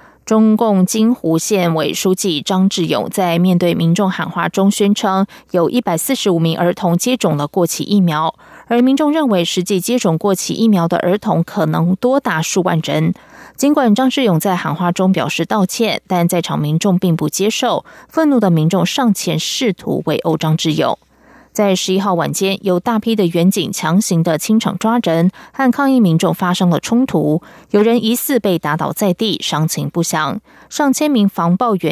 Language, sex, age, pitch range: German, female, 20-39, 170-220 Hz